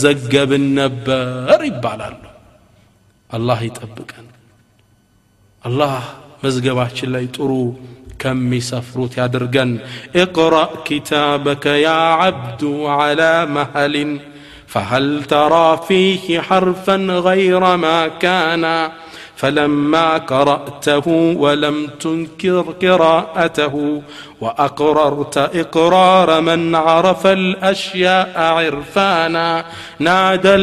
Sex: male